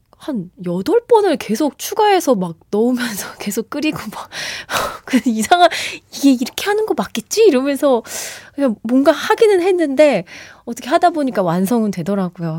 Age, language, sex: 20-39, Korean, female